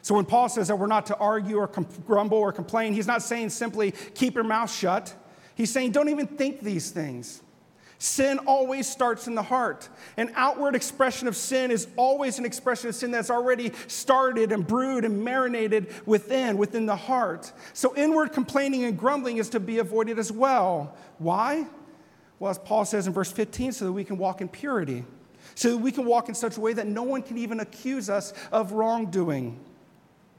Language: English